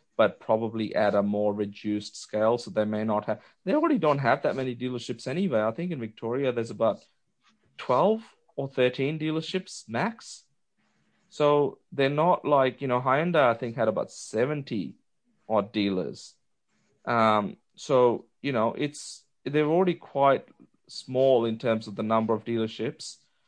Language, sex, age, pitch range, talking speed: English, male, 30-49, 105-125 Hz, 155 wpm